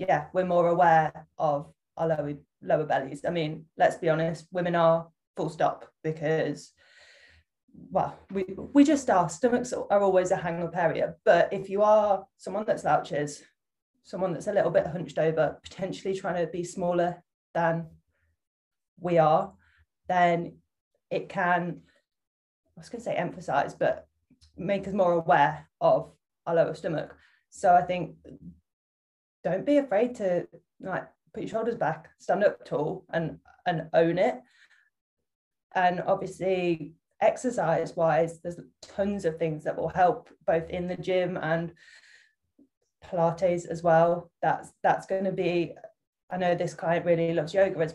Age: 20-39